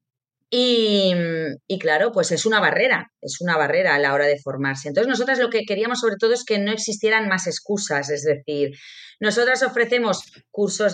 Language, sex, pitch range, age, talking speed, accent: Spanish, female, 170-220 Hz, 30-49, 180 wpm, Spanish